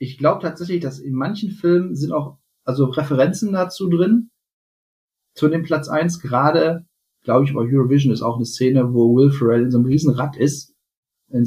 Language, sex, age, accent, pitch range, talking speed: German, male, 40-59, German, 120-155 Hz, 185 wpm